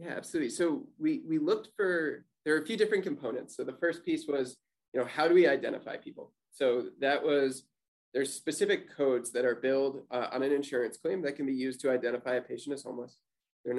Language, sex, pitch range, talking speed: English, male, 125-165 Hz, 220 wpm